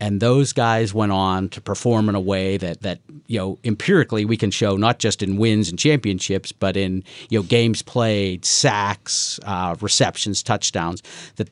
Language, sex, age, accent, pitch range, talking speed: English, male, 50-69, American, 100-115 Hz, 180 wpm